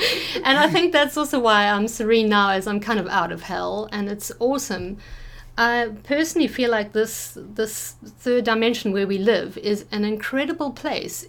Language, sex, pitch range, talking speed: English, female, 210-255 Hz, 180 wpm